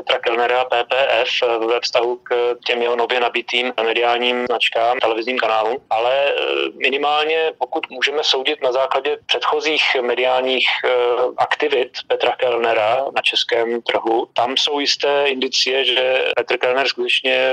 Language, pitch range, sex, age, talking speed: Slovak, 120-135 Hz, male, 30-49, 125 wpm